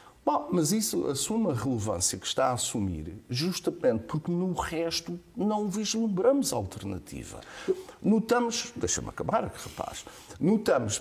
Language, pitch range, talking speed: Portuguese, 125-210 Hz, 120 wpm